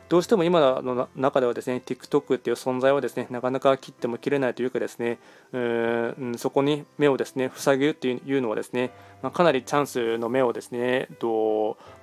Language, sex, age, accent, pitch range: Japanese, male, 20-39, native, 125-150 Hz